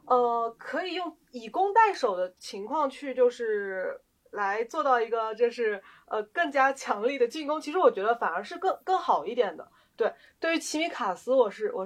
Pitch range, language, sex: 230-325 Hz, Chinese, female